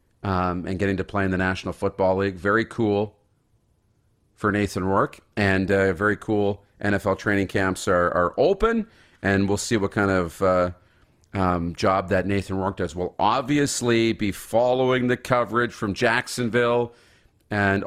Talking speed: 160 wpm